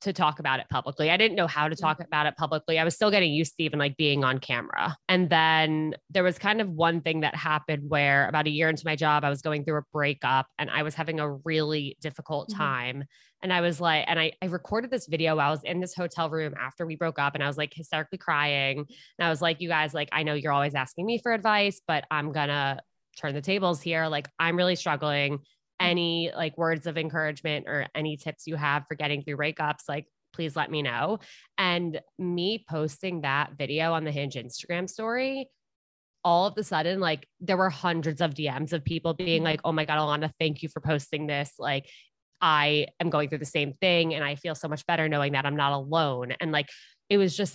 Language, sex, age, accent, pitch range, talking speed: English, female, 20-39, American, 150-170 Hz, 235 wpm